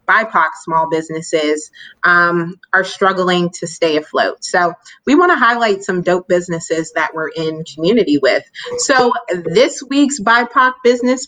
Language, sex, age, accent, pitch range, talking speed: English, female, 30-49, American, 170-215 Hz, 145 wpm